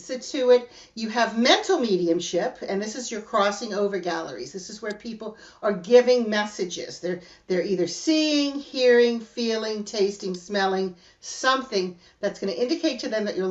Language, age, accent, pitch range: English, 50-69, American, 175-210 Hz